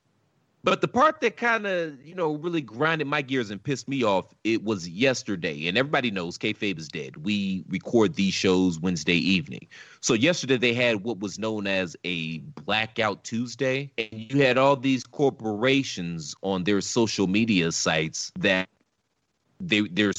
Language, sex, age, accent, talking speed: English, male, 30-49, American, 165 wpm